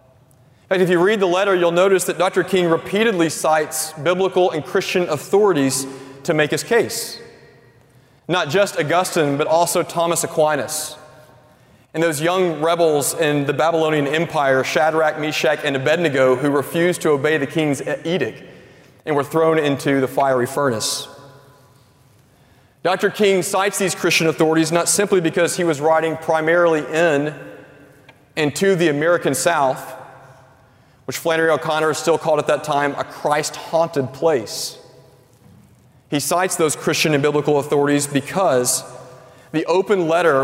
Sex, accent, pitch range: male, American, 135-170 Hz